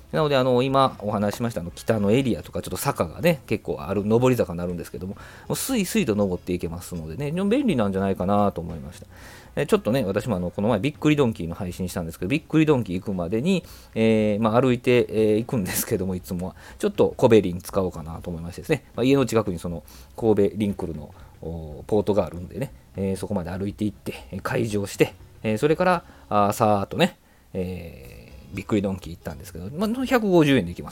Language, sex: Japanese, male